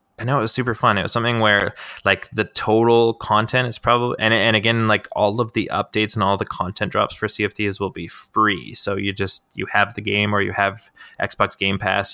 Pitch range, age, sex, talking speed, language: 95-105 Hz, 20-39, male, 230 wpm, English